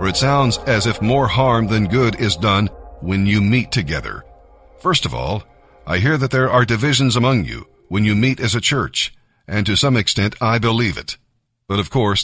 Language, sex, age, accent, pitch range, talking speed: English, male, 50-69, American, 105-130 Hz, 205 wpm